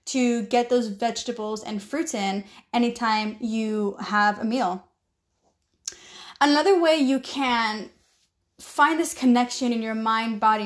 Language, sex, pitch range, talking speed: English, female, 225-270 Hz, 130 wpm